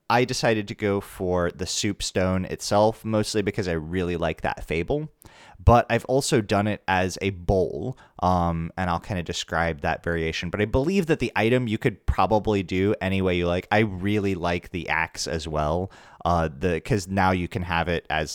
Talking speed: 205 wpm